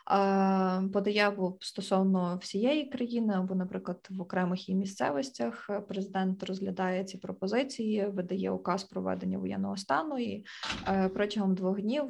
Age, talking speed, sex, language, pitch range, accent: 20-39, 120 wpm, female, Ukrainian, 185-205 Hz, native